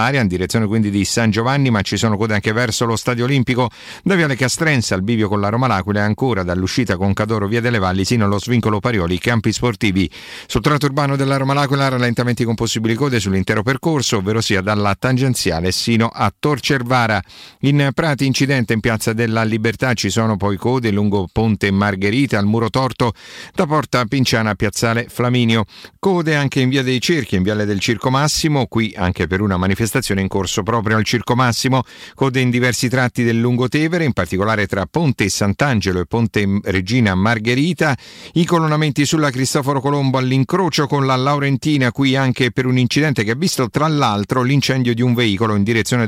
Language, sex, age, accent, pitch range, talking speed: Italian, male, 50-69, native, 105-130 Hz, 185 wpm